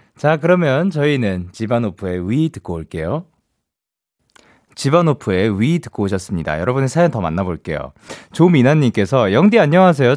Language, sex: Korean, male